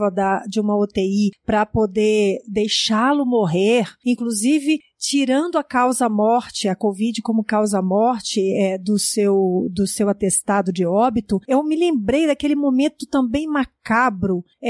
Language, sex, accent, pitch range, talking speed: Portuguese, female, Brazilian, 205-275 Hz, 115 wpm